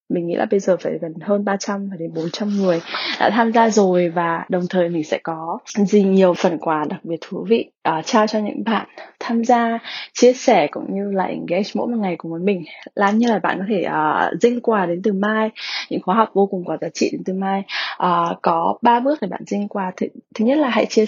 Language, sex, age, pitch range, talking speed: English, female, 20-39, 180-220 Hz, 250 wpm